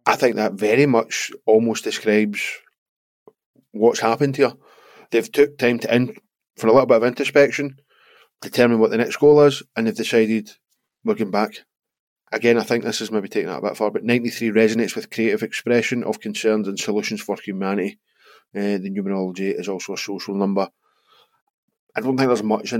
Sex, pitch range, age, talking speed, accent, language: male, 100-125 Hz, 20-39, 185 wpm, British, English